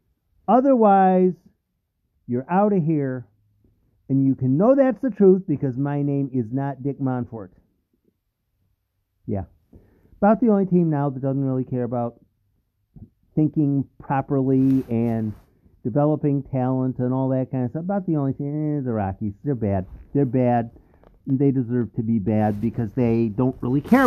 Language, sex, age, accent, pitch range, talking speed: English, male, 50-69, American, 115-160 Hz, 155 wpm